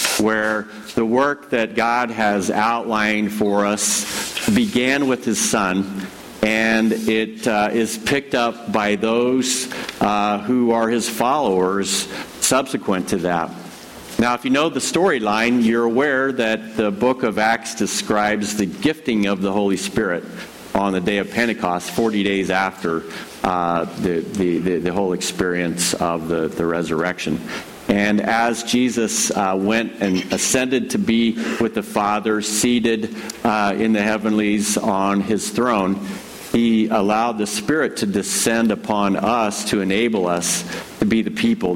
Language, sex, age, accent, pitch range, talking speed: English, male, 50-69, American, 100-115 Hz, 145 wpm